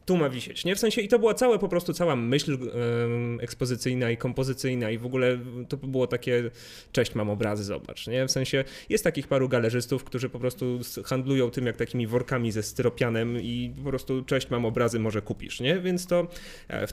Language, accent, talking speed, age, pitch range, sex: Polish, native, 200 wpm, 30-49, 120-140 Hz, male